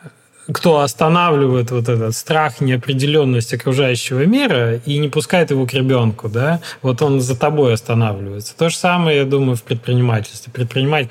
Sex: male